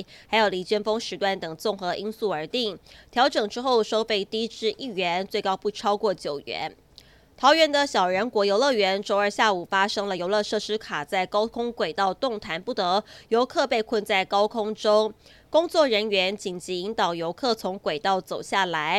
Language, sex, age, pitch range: Chinese, female, 20-39, 185-225 Hz